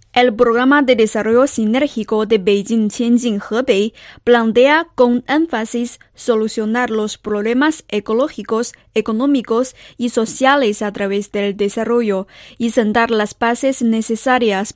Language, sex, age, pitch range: Chinese, female, 20-39, 215-255 Hz